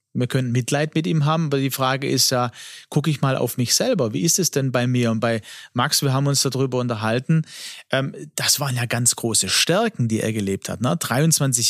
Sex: male